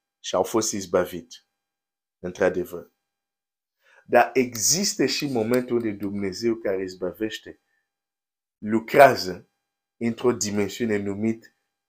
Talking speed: 100 wpm